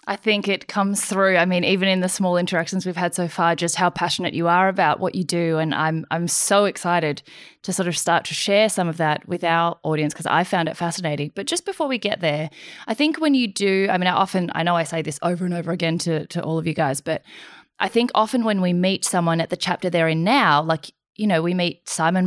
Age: 20-39